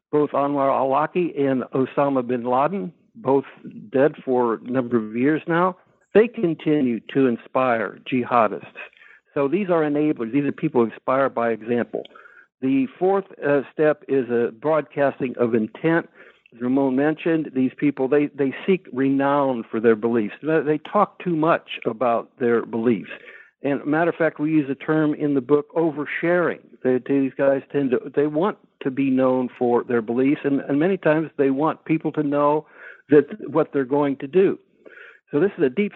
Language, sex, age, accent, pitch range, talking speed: English, male, 60-79, American, 125-155 Hz, 175 wpm